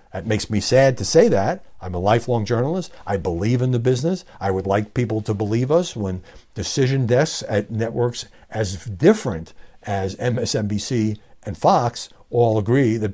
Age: 60-79